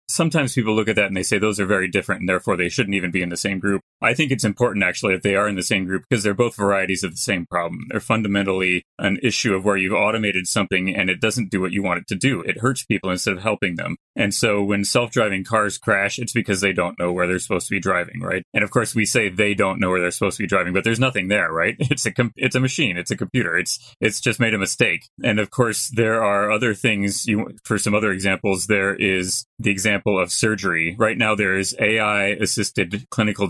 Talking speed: 260 wpm